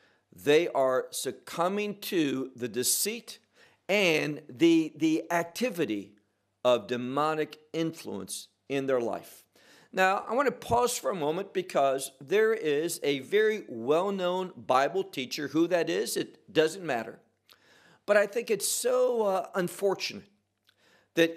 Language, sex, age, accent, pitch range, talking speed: English, male, 50-69, American, 140-205 Hz, 130 wpm